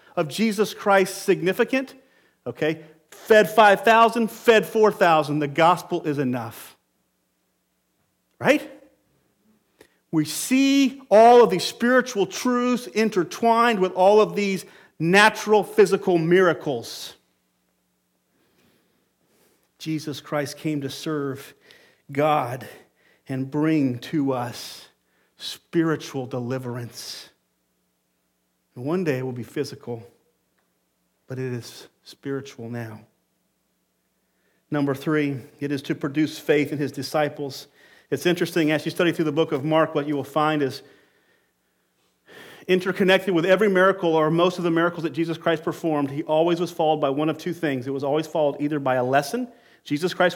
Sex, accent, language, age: male, American, English, 40-59